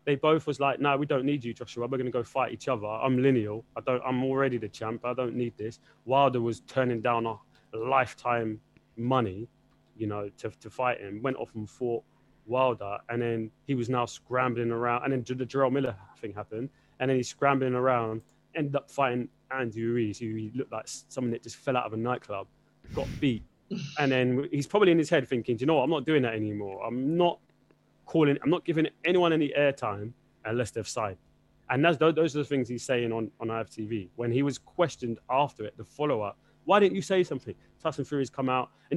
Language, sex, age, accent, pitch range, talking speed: English, male, 20-39, British, 115-145 Hz, 220 wpm